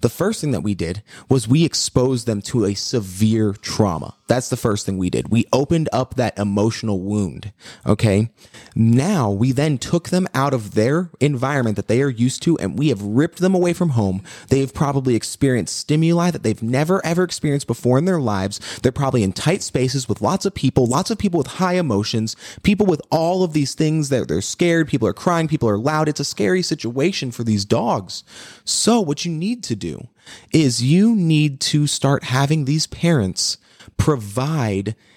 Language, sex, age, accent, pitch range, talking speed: English, male, 30-49, American, 110-155 Hz, 195 wpm